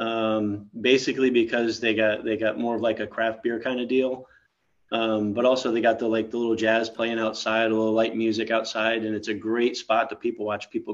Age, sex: 30-49, male